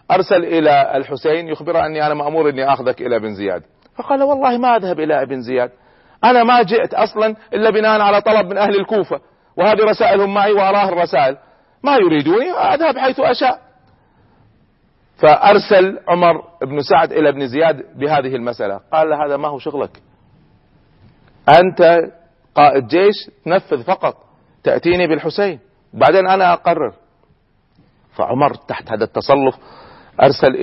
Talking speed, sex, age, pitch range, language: 140 wpm, male, 40-59, 145-210 Hz, Arabic